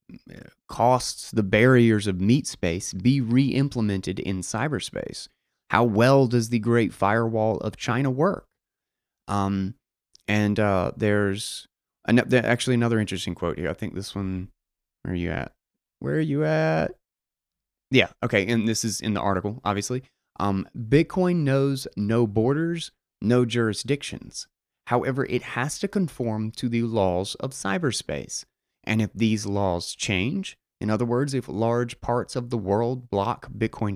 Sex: male